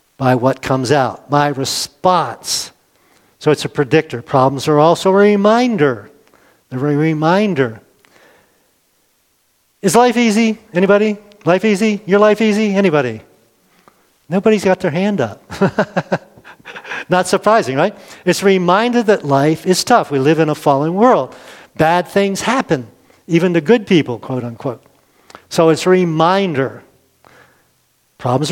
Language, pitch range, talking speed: English, 140-195 Hz, 135 wpm